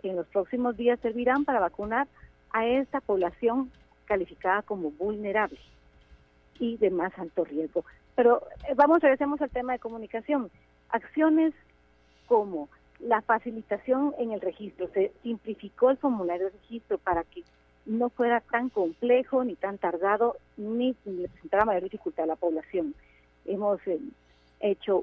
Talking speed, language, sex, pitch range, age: 140 wpm, Spanish, female, 180-235 Hz, 40-59